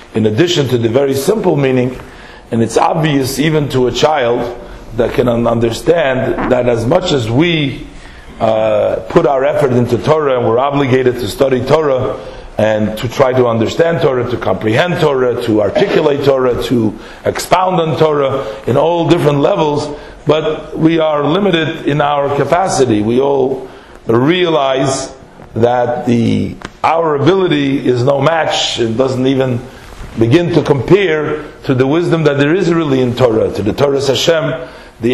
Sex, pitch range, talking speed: male, 125-160 Hz, 155 wpm